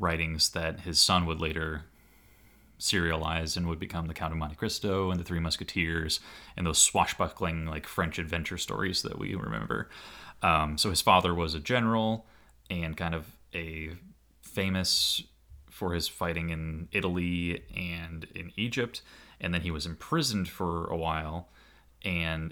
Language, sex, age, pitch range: English, male, 20-39, 80-95 Hz